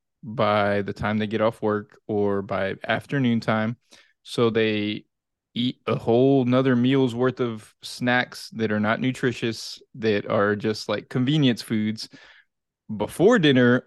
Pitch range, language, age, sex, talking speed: 110-130 Hz, English, 20-39, male, 145 wpm